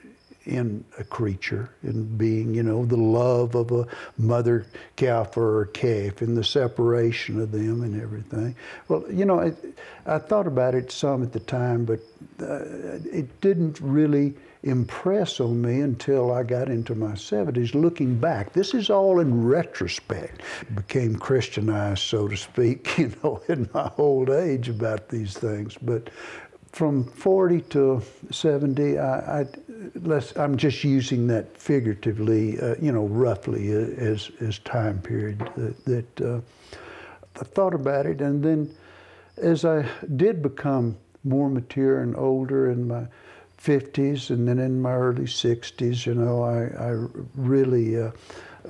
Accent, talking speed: American, 150 wpm